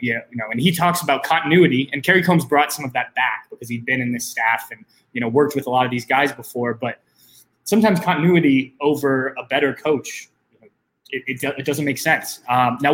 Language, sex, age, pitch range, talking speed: English, male, 20-39, 125-150 Hz, 230 wpm